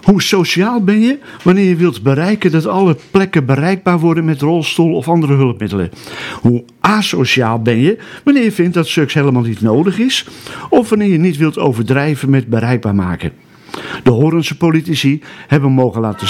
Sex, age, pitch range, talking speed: male, 50-69, 125-175 Hz, 170 wpm